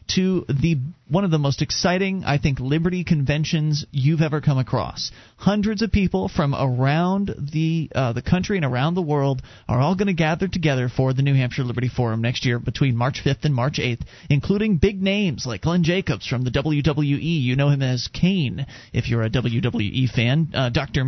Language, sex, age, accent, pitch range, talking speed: English, male, 30-49, American, 125-160 Hz, 195 wpm